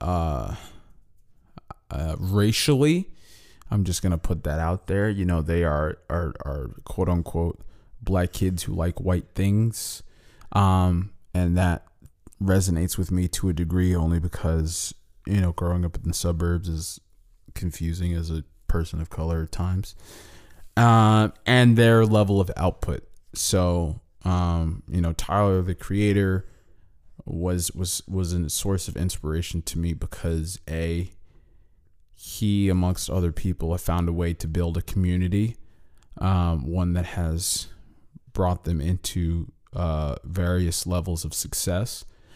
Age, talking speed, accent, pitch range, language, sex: 20-39, 140 wpm, American, 85-95 Hz, English, male